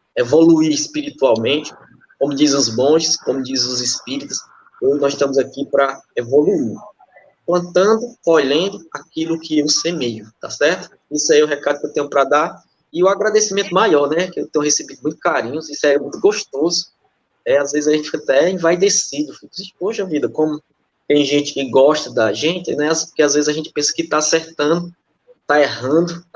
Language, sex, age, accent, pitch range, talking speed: Portuguese, male, 20-39, Brazilian, 140-170 Hz, 185 wpm